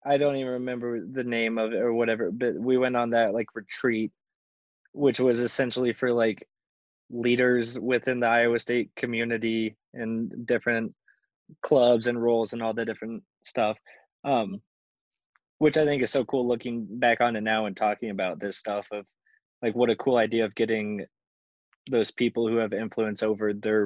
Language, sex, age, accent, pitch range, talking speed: English, male, 20-39, American, 105-120 Hz, 175 wpm